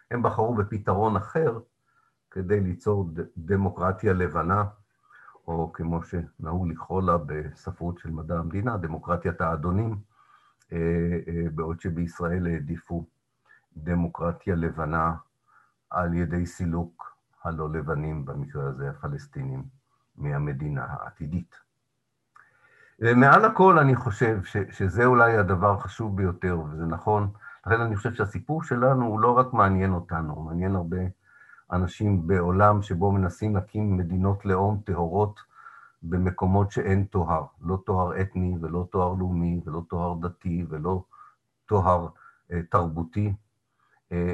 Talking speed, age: 110 wpm, 50-69